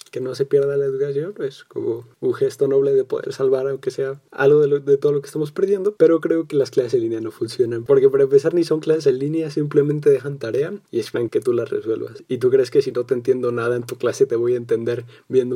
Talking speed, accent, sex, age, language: 265 wpm, Mexican, male, 20-39, Spanish